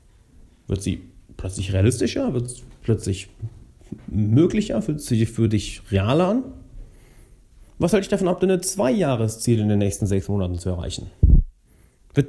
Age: 40-59